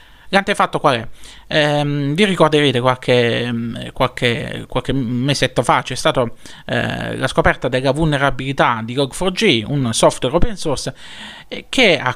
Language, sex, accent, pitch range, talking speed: Italian, male, native, 125-165 Hz, 145 wpm